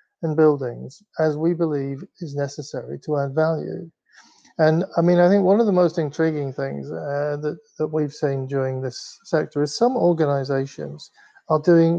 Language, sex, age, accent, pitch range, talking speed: English, male, 50-69, British, 145-175 Hz, 170 wpm